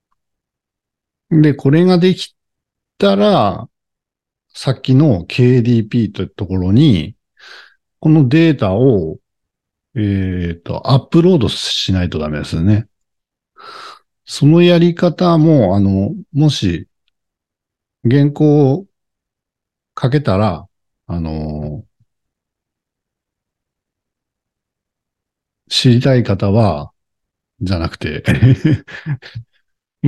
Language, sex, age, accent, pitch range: Japanese, male, 60-79, native, 95-155 Hz